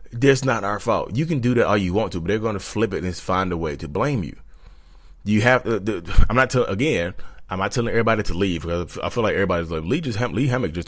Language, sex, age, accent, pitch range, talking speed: English, male, 20-39, American, 85-110 Hz, 275 wpm